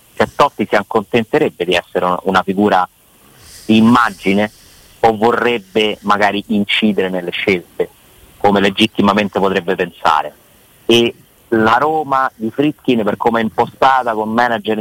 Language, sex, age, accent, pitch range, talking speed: Italian, male, 30-49, native, 105-120 Hz, 125 wpm